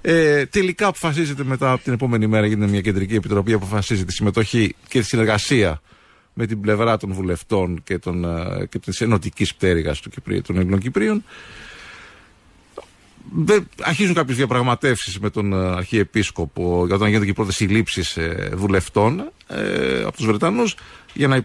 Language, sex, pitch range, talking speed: Greek, male, 95-140 Hz, 150 wpm